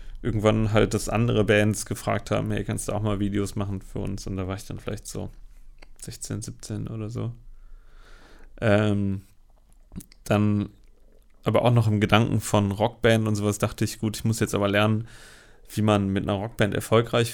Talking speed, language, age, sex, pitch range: 180 wpm, German, 30-49, male, 95-110 Hz